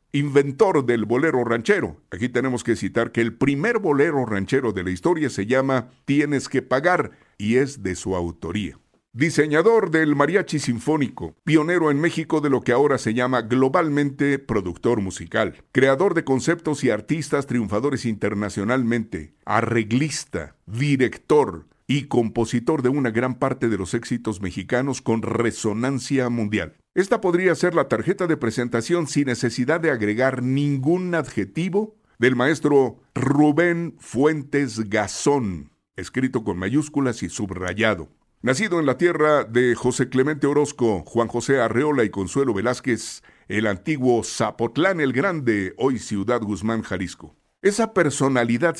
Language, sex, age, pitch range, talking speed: Spanish, male, 50-69, 110-145 Hz, 140 wpm